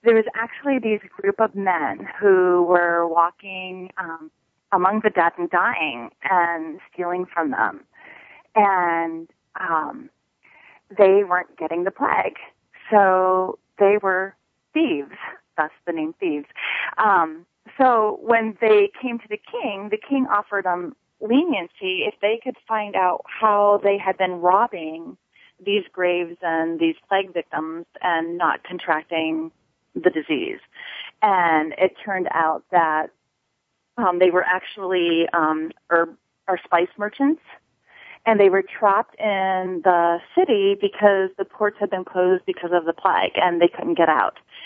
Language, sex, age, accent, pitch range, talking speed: English, female, 30-49, American, 165-205 Hz, 140 wpm